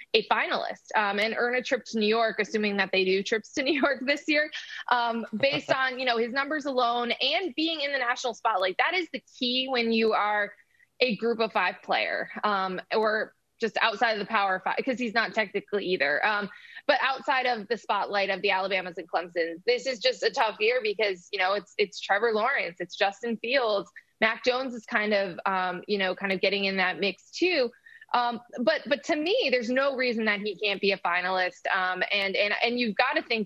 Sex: female